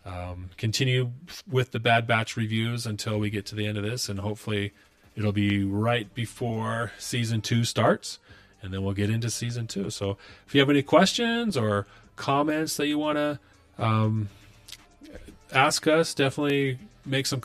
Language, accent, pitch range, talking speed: English, American, 100-125 Hz, 170 wpm